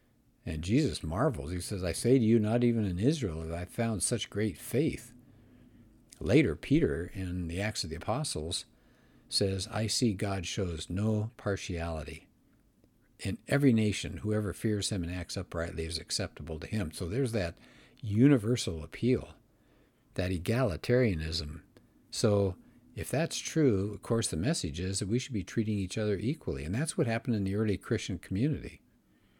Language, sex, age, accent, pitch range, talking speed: English, male, 60-79, American, 90-120 Hz, 165 wpm